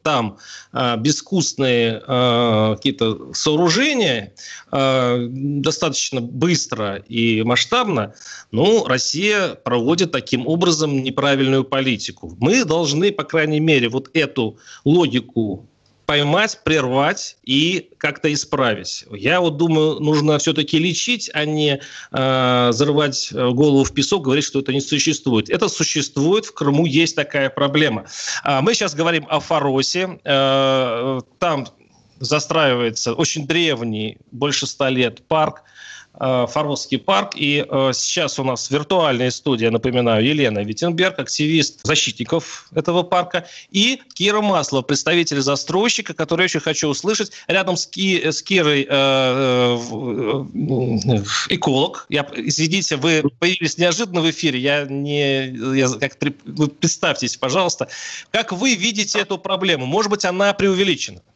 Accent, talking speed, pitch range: native, 125 wpm, 130-165 Hz